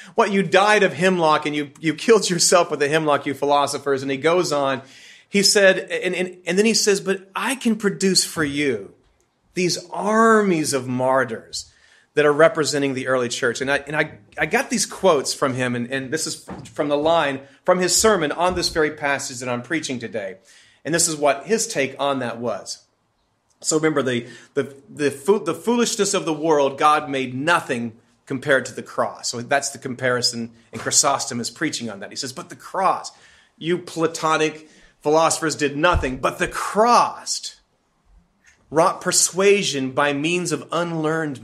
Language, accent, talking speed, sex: English, American, 185 wpm, male